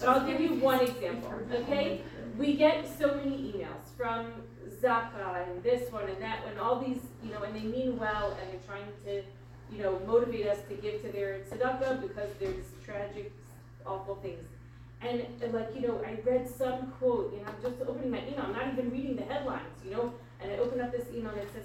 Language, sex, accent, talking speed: English, female, American, 220 wpm